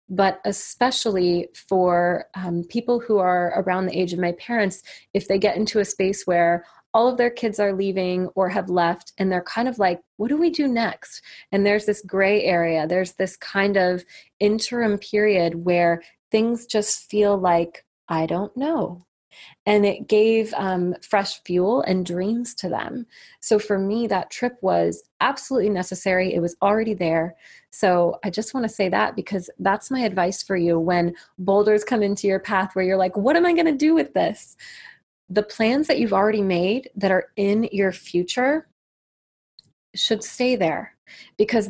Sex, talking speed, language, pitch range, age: female, 180 wpm, English, 180-215 Hz, 20-39